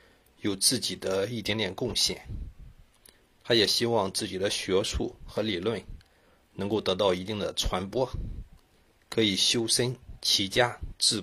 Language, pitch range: Chinese, 90-115 Hz